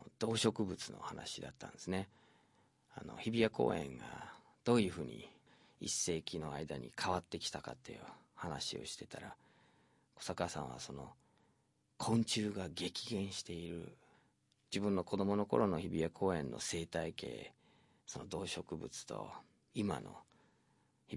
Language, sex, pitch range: Japanese, male, 85-115 Hz